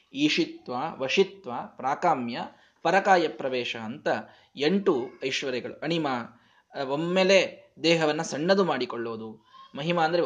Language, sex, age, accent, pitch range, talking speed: Kannada, male, 20-39, native, 150-215 Hz, 90 wpm